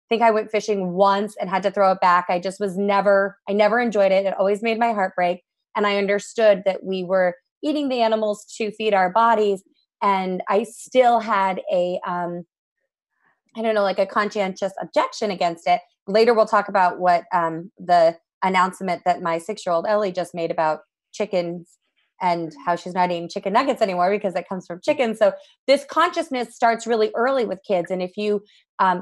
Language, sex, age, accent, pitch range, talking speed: English, female, 30-49, American, 180-215 Hz, 190 wpm